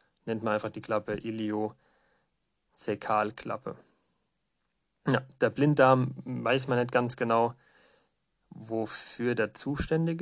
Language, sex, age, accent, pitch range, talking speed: German, male, 30-49, German, 110-130 Hz, 100 wpm